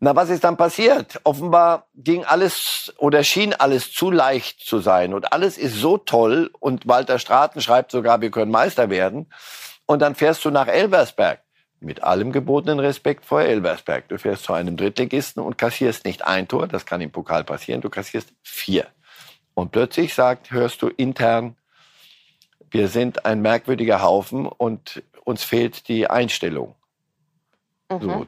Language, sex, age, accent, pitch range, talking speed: German, male, 60-79, German, 115-160 Hz, 160 wpm